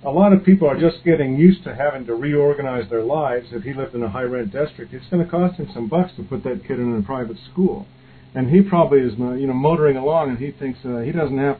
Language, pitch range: English, 130-170 Hz